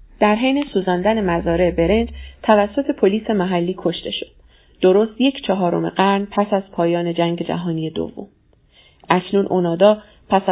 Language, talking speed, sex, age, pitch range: Persian, 130 wpm, female, 30-49, 175-210 Hz